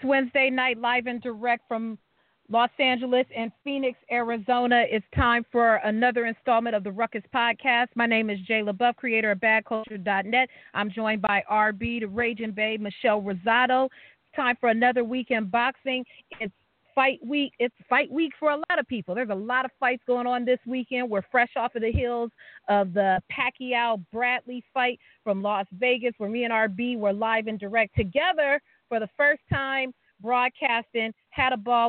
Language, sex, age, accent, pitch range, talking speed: English, female, 40-59, American, 220-255 Hz, 175 wpm